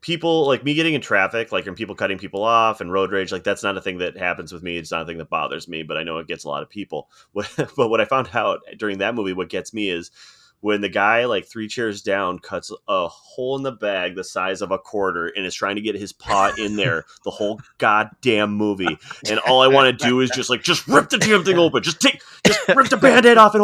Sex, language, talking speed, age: male, English, 270 wpm, 30-49